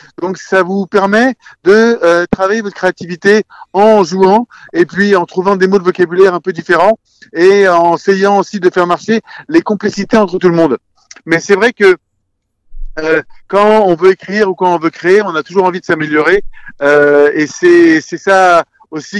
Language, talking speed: French, 190 wpm